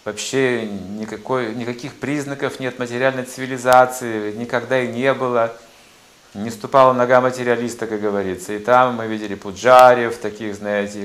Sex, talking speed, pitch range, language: male, 130 wpm, 105-125 Hz, Russian